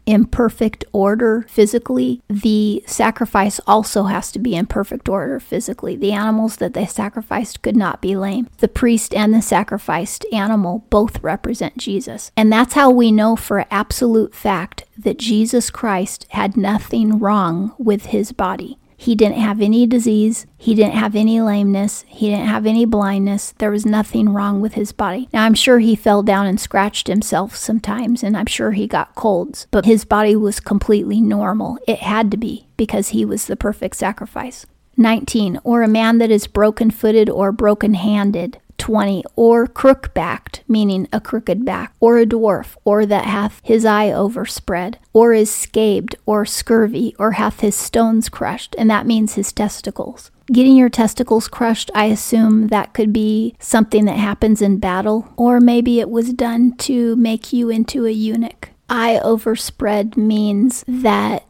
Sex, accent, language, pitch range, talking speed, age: female, American, English, 205-230 Hz, 170 wpm, 40-59